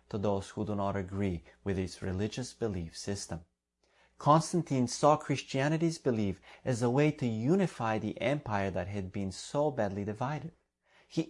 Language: English